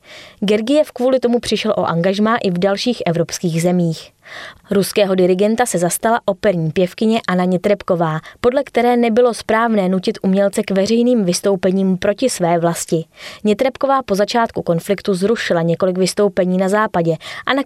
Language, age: Czech, 20-39